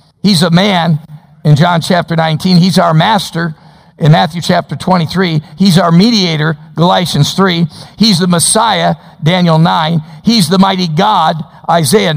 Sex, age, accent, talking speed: male, 50-69, American, 145 wpm